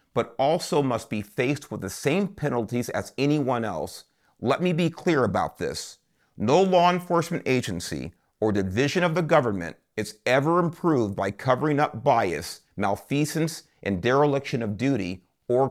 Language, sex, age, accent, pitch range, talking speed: English, male, 40-59, American, 105-150 Hz, 155 wpm